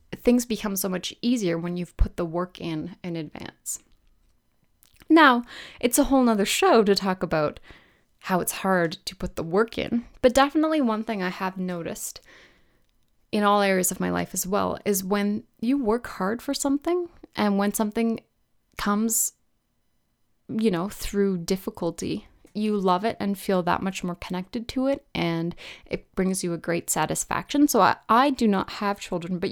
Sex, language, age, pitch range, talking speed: female, English, 20-39, 175-220 Hz, 175 wpm